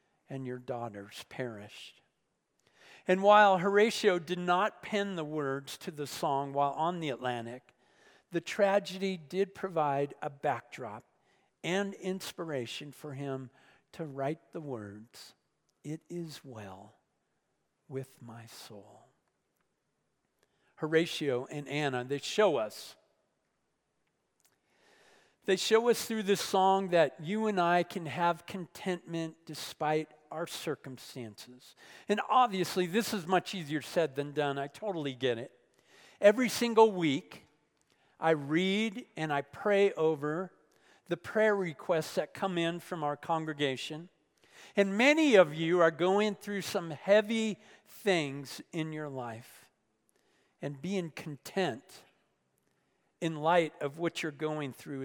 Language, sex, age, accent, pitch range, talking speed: English, male, 50-69, American, 140-190 Hz, 125 wpm